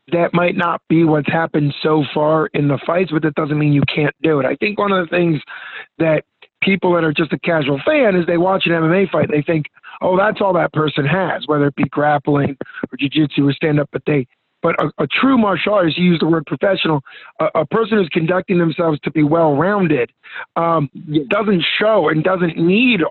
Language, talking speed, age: English, 220 wpm, 50-69